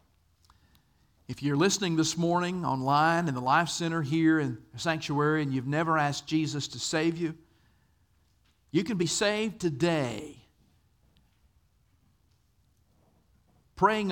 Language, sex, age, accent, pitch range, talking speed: English, male, 50-69, American, 110-155 Hz, 120 wpm